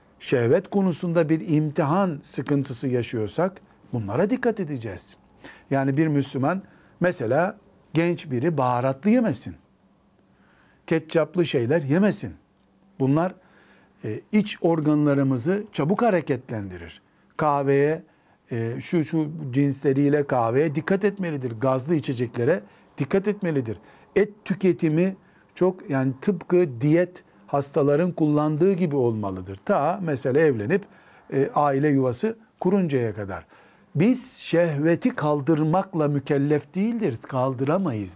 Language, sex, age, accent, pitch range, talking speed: Turkish, male, 60-79, native, 135-185 Hz, 95 wpm